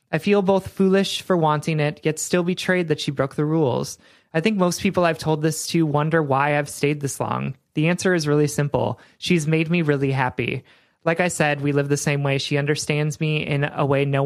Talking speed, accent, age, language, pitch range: 225 wpm, American, 30-49, English, 135-165 Hz